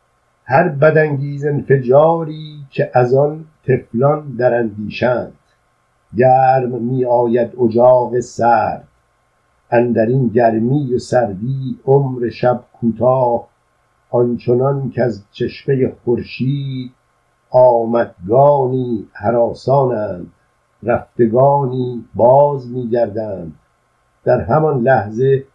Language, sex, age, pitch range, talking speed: Persian, male, 50-69, 120-140 Hz, 80 wpm